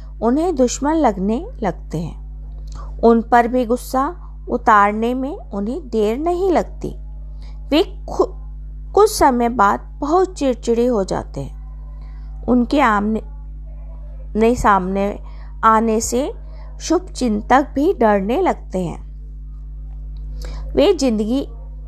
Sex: female